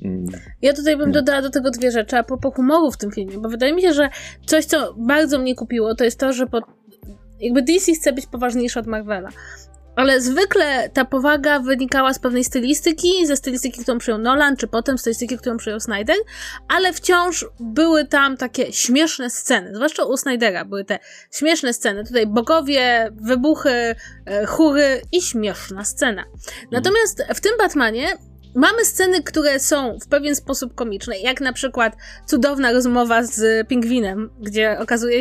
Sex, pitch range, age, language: female, 225-295 Hz, 20-39, Polish